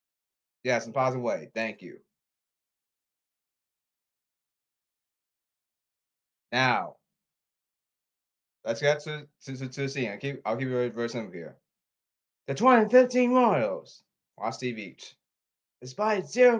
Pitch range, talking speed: 125-155 Hz, 120 wpm